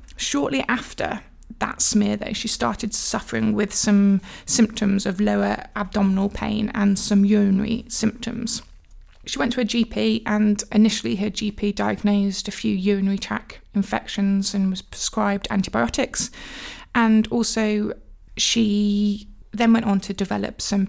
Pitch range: 200-220 Hz